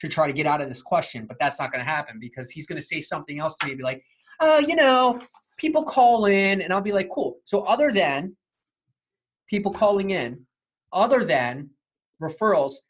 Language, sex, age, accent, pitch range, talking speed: English, male, 20-39, American, 135-180 Hz, 205 wpm